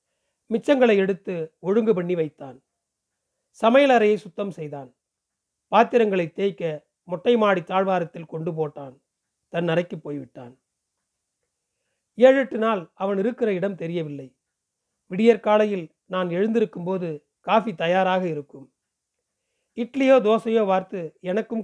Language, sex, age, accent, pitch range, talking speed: Tamil, male, 40-59, native, 160-215 Hz, 105 wpm